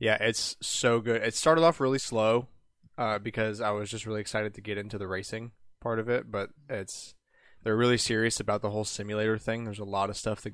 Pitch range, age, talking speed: 100-110 Hz, 20-39, 230 wpm